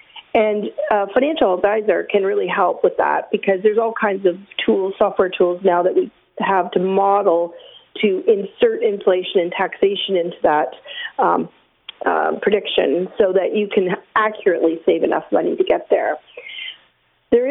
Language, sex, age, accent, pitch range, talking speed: English, female, 40-59, American, 190-285 Hz, 155 wpm